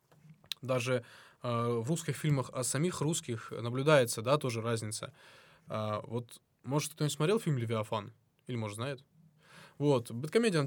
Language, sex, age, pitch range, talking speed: Russian, male, 20-39, 120-155 Hz, 135 wpm